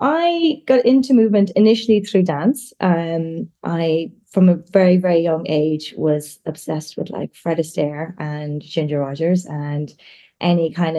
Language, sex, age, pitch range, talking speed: English, female, 20-39, 160-195 Hz, 145 wpm